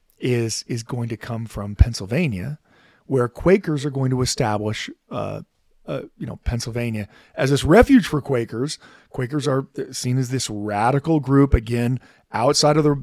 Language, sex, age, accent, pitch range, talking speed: English, male, 40-59, American, 110-145 Hz, 155 wpm